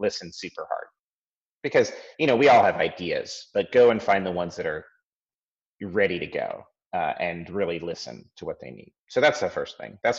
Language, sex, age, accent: English, male, 30-49, American